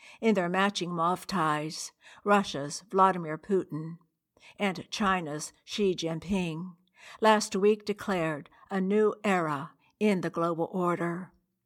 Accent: American